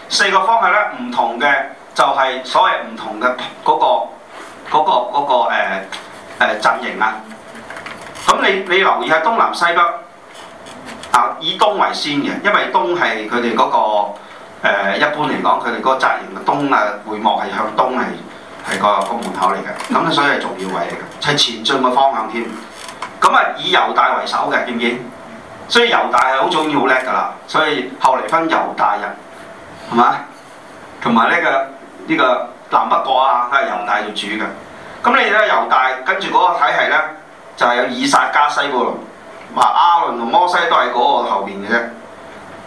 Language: Chinese